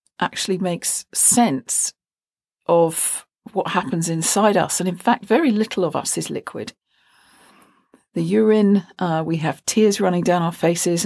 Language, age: English, 50-69